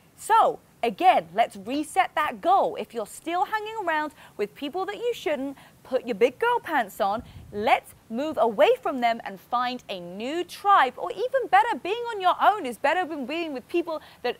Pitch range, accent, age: 240-365 Hz, British, 30-49